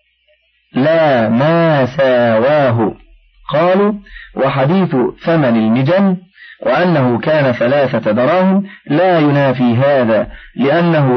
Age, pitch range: 40-59, 125-175 Hz